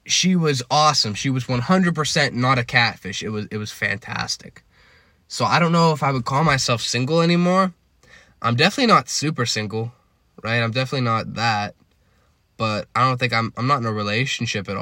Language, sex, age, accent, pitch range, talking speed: English, male, 10-29, American, 105-140 Hz, 185 wpm